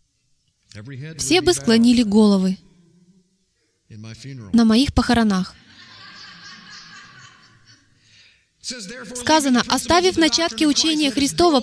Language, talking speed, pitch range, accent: Russian, 60 wpm, 230-305 Hz, native